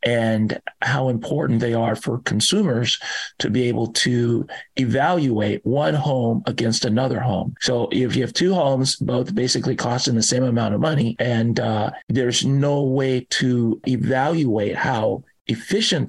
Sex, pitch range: male, 120-170 Hz